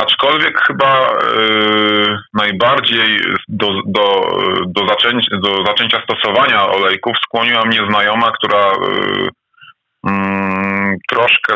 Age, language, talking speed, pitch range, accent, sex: 20-39, Polish, 65 wpm, 100-120 Hz, native, male